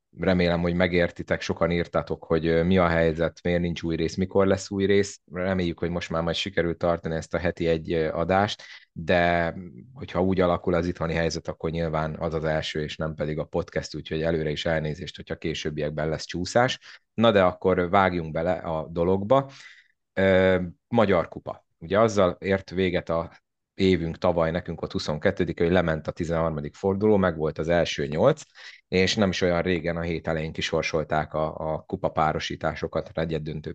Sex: male